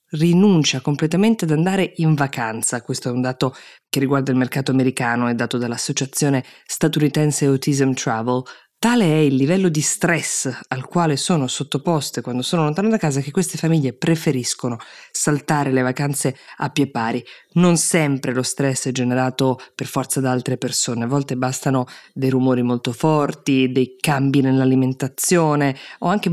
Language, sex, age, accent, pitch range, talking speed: Italian, female, 20-39, native, 130-165 Hz, 155 wpm